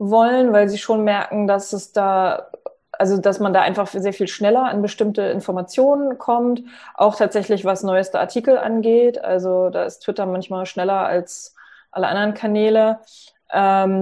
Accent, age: German, 20-39